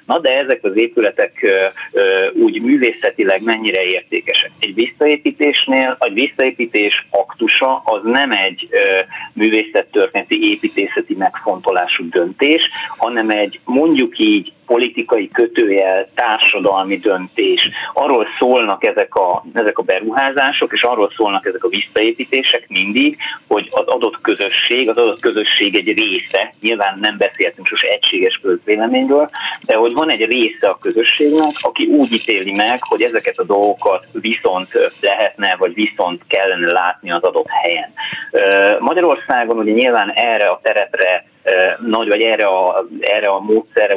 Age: 30-49